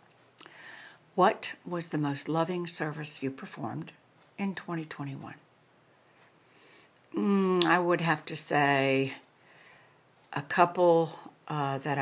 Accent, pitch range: American, 145-175 Hz